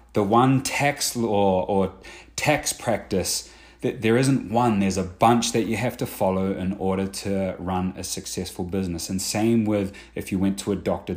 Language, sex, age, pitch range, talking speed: English, male, 30-49, 85-100 Hz, 190 wpm